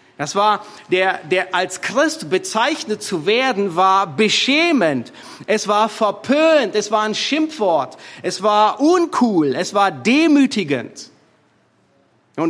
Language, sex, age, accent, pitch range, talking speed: German, male, 40-59, German, 140-240 Hz, 120 wpm